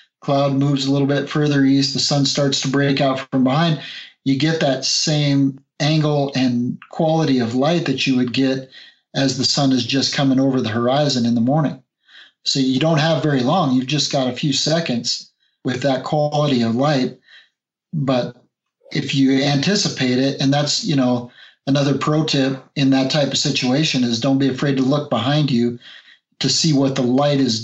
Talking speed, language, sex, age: 190 wpm, English, male, 40-59